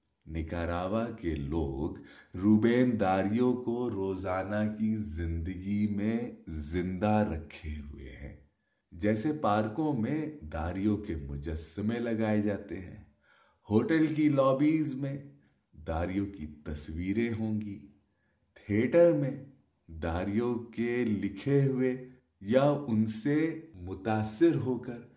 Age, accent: 30-49, Indian